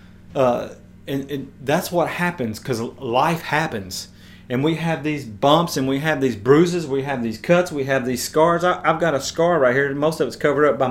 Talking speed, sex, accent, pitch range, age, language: 220 wpm, male, American, 120-155 Hz, 30-49, English